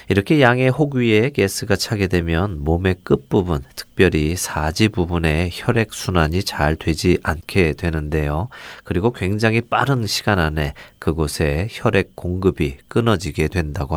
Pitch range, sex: 80-105 Hz, male